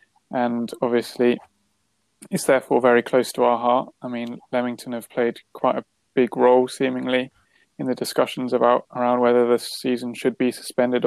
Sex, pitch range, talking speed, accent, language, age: male, 120-130 Hz, 165 wpm, British, English, 20-39